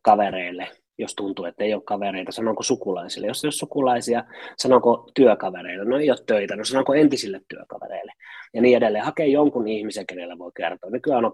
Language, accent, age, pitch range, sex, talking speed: Finnish, native, 30-49, 100-135 Hz, male, 175 wpm